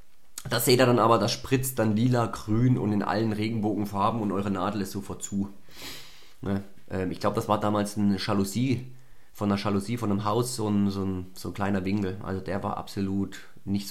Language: German